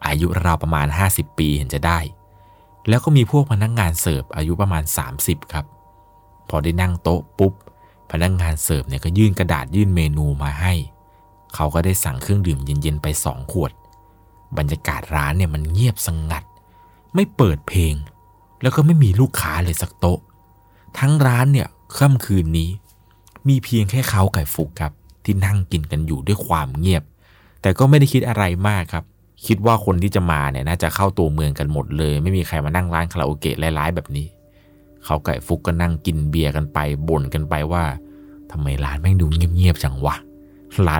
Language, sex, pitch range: Thai, male, 75-95 Hz